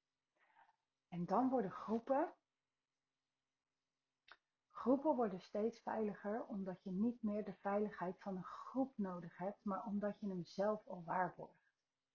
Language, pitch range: Dutch, 175-225 Hz